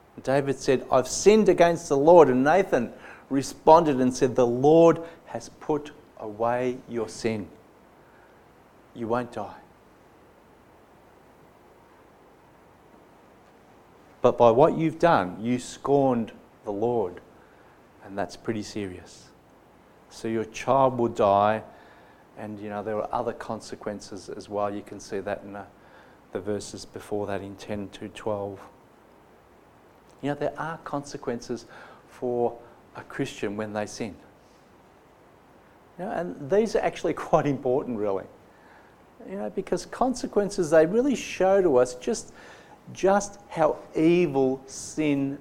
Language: English